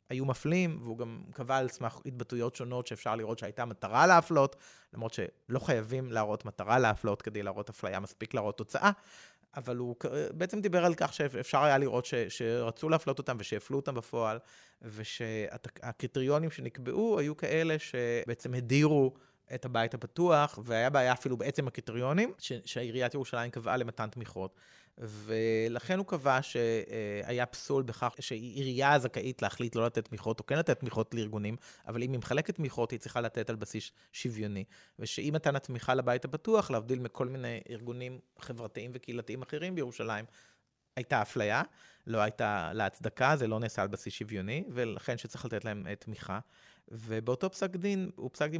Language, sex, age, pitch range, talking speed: Hebrew, male, 30-49, 115-145 Hz, 155 wpm